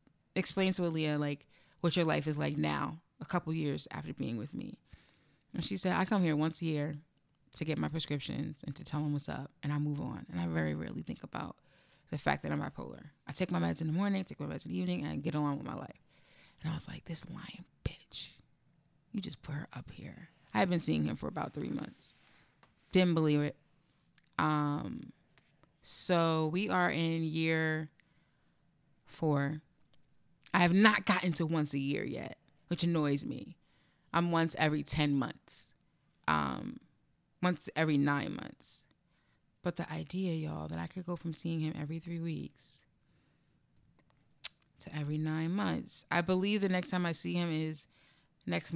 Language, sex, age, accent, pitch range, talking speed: English, female, 20-39, American, 140-170 Hz, 190 wpm